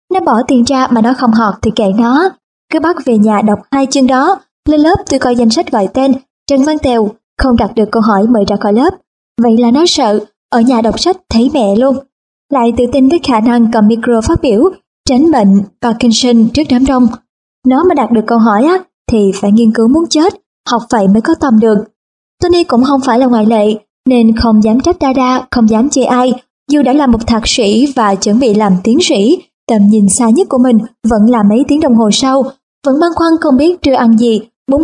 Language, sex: Vietnamese, male